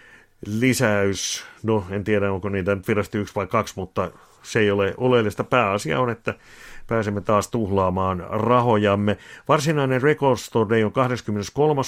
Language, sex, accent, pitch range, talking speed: Finnish, male, native, 100-120 Hz, 140 wpm